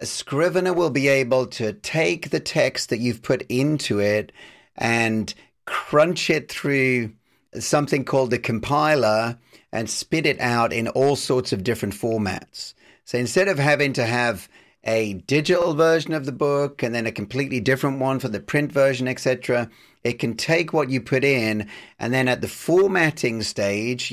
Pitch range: 115-140 Hz